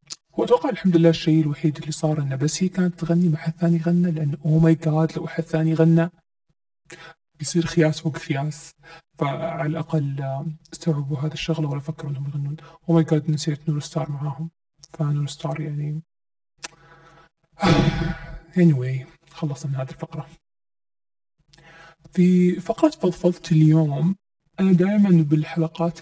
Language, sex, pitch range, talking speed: Arabic, male, 150-165 Hz, 135 wpm